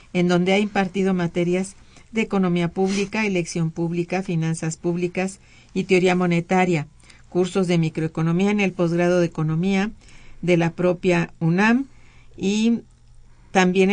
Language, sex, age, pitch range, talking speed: Spanish, female, 50-69, 165-190 Hz, 125 wpm